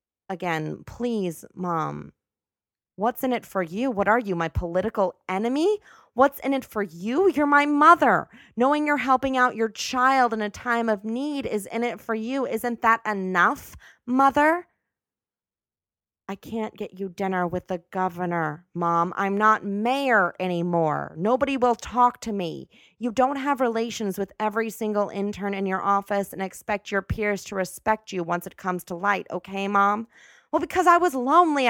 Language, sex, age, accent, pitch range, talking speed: English, female, 30-49, American, 185-250 Hz, 170 wpm